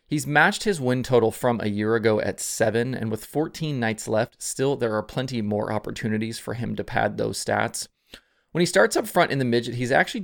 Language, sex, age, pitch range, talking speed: English, male, 20-39, 110-145 Hz, 225 wpm